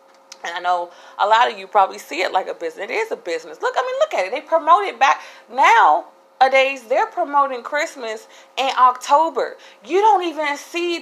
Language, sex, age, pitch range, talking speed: English, female, 30-49, 200-265 Hz, 205 wpm